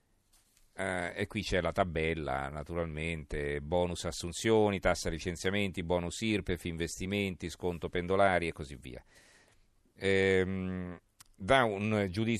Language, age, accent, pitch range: Italian, 40-59, native, 90-110 Hz